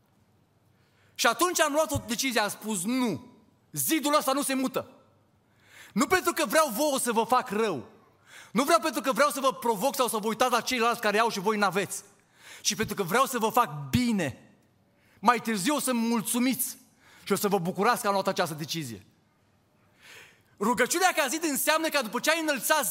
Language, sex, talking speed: Romanian, male, 195 wpm